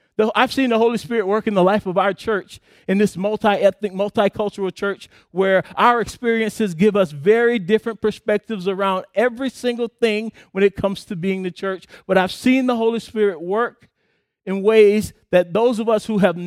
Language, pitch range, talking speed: English, 155-205 Hz, 185 wpm